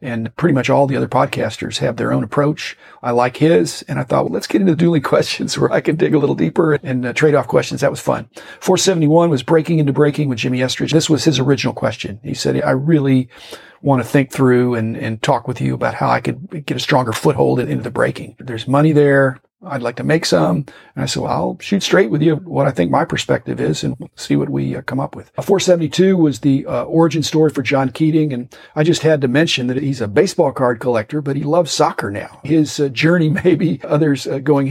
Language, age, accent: English, 40-59, American